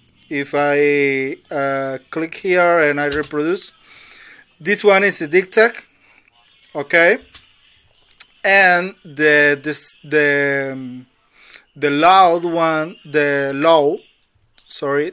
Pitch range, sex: 145-190 Hz, male